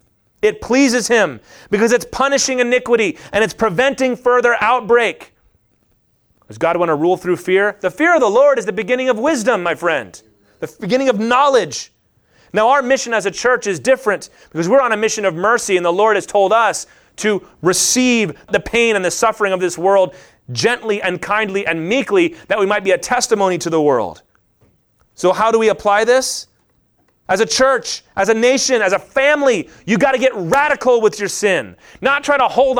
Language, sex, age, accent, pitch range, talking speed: English, male, 30-49, American, 185-245 Hz, 195 wpm